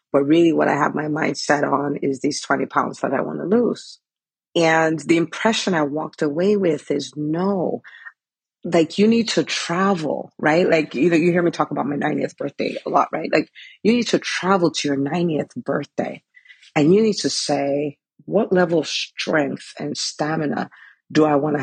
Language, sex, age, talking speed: English, female, 40-59, 195 wpm